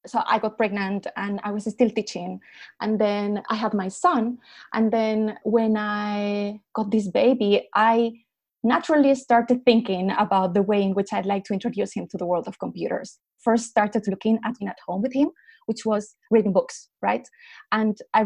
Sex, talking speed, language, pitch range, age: female, 185 wpm, English, 210-255 Hz, 20-39